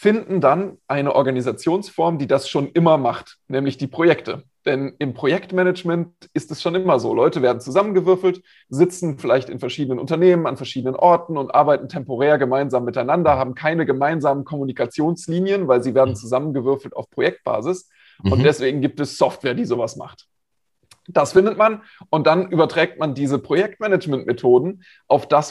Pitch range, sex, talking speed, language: 130-170 Hz, male, 155 wpm, German